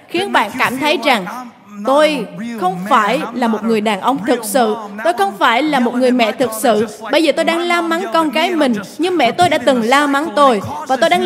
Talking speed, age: 235 wpm, 20-39